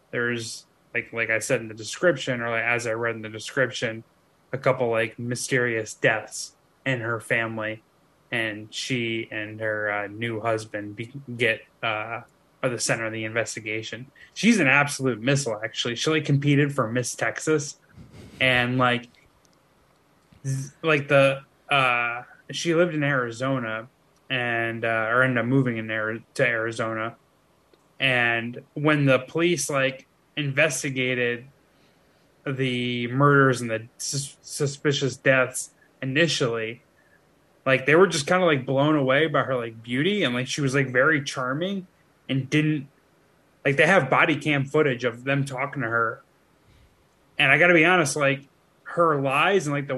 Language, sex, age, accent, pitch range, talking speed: English, male, 10-29, American, 120-150 Hz, 155 wpm